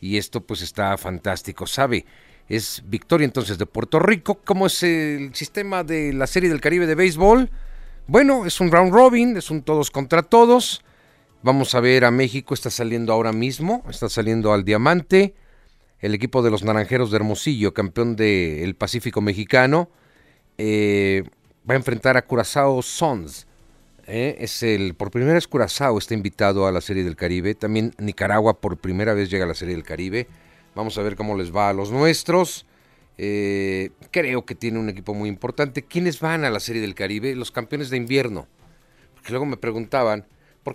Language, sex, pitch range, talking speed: Spanish, male, 105-145 Hz, 185 wpm